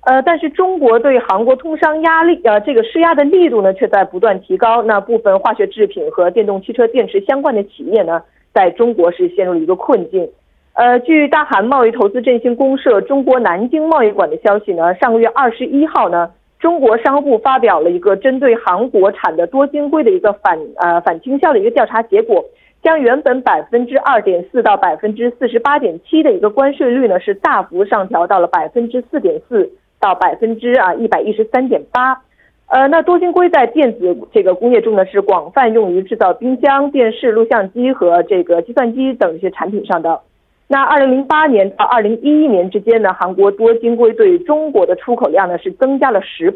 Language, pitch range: Korean, 205-300 Hz